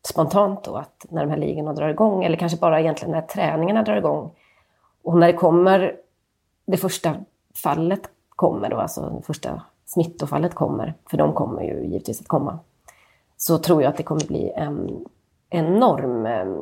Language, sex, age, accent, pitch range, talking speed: Swedish, female, 30-49, native, 160-190 Hz, 170 wpm